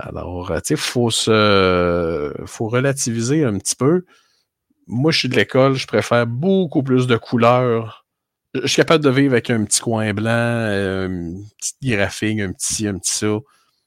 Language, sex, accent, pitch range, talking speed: French, male, Canadian, 95-125 Hz, 170 wpm